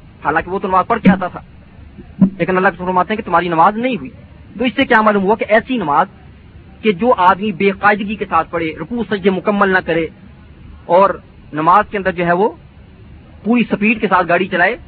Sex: male